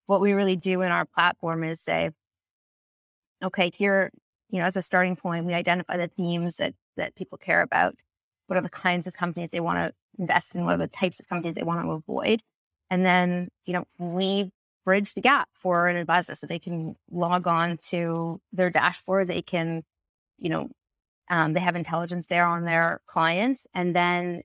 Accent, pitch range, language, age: American, 170-190 Hz, English, 20-39